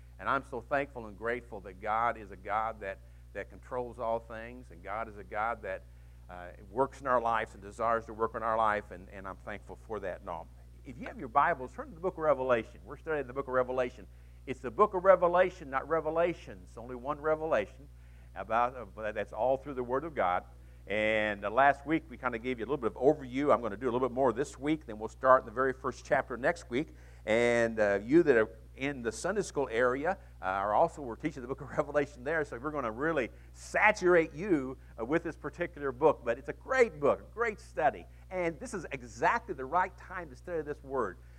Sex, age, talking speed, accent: male, 50-69, 240 wpm, American